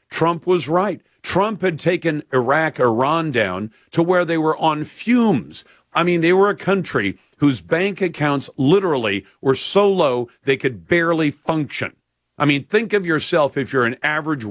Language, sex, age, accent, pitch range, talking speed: English, male, 50-69, American, 130-170 Hz, 170 wpm